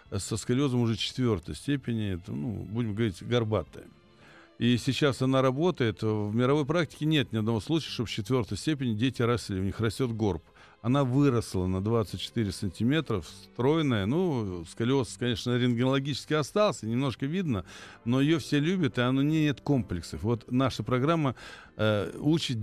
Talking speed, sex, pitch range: 150 wpm, male, 110-150 Hz